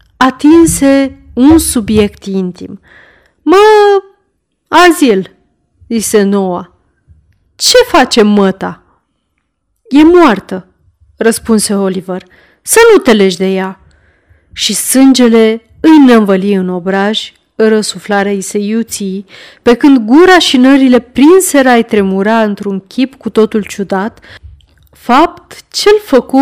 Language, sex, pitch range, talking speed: Romanian, female, 200-270 Hz, 105 wpm